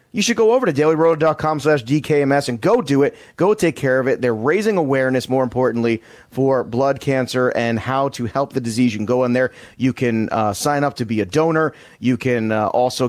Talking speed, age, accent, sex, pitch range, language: 225 wpm, 30-49, American, male, 120-150 Hz, English